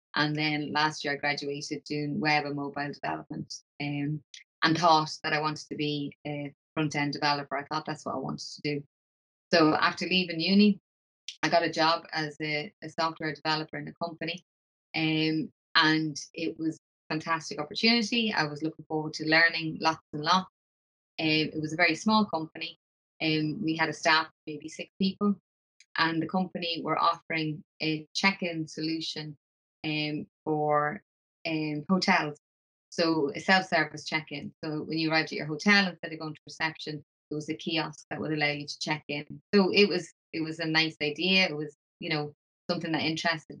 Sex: female